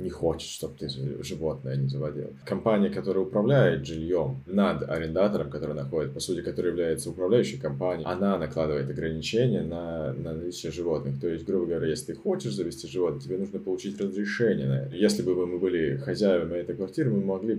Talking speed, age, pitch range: 170 wpm, 20-39, 80-105 Hz